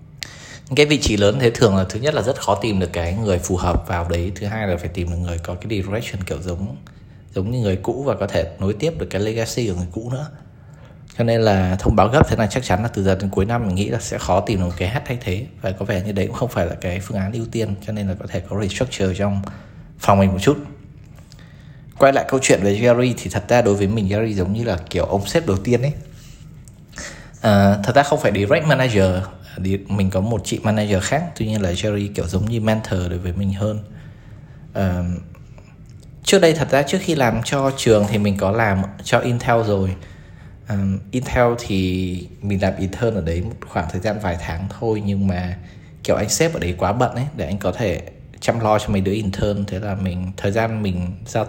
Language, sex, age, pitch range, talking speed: Vietnamese, male, 20-39, 95-120 Hz, 240 wpm